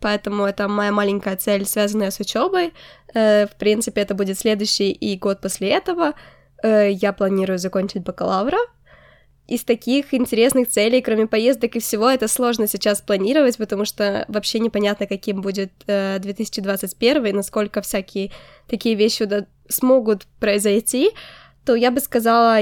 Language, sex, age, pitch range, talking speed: Ukrainian, female, 20-39, 200-230 Hz, 135 wpm